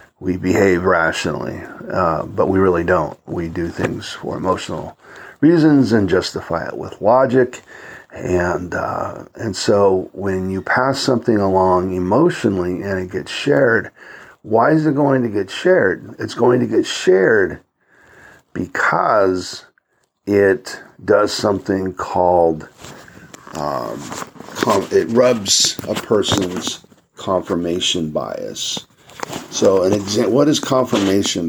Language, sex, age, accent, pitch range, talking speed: English, male, 50-69, American, 95-135 Hz, 120 wpm